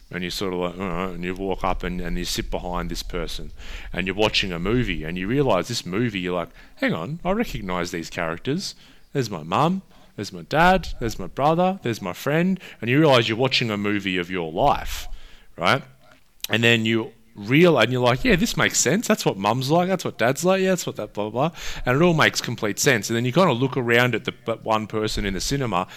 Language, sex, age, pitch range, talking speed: English, male, 30-49, 95-130 Hz, 240 wpm